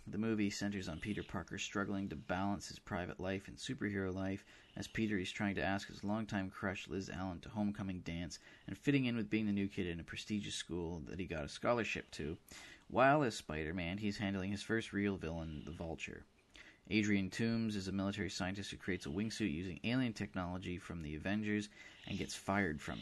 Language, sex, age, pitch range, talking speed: English, male, 30-49, 90-105 Hz, 205 wpm